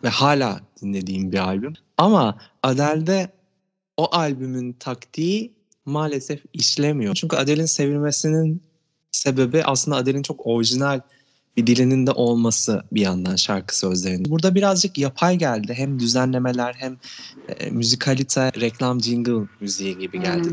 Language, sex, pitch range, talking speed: Turkish, male, 115-155 Hz, 120 wpm